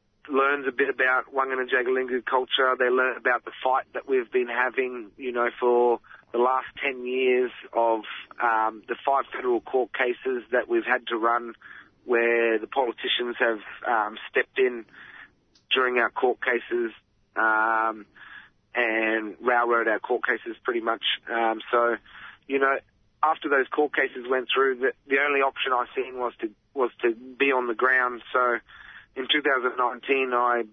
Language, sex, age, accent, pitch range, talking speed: English, male, 30-49, Australian, 120-140 Hz, 160 wpm